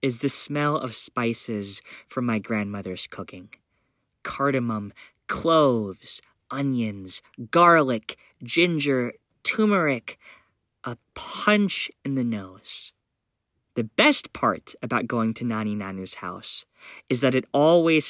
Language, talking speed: English, 110 wpm